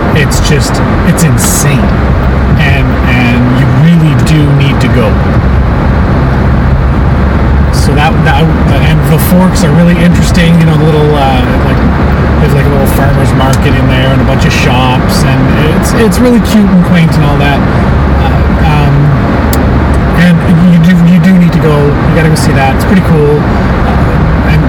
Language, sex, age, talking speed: English, male, 30-49, 170 wpm